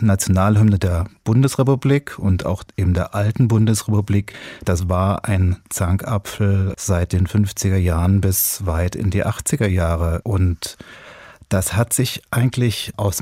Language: German